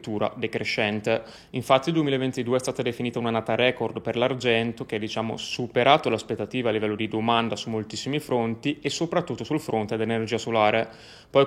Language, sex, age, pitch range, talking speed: Italian, male, 20-39, 110-130 Hz, 160 wpm